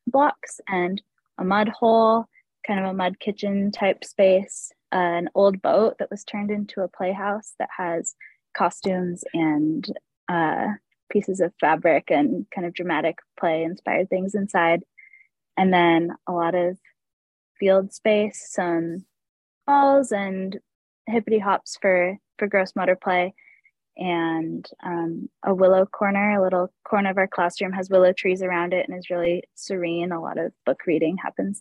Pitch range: 180-210 Hz